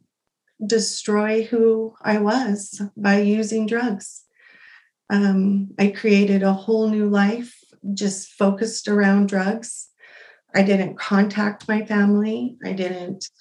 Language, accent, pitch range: English, American, 195-220 Hz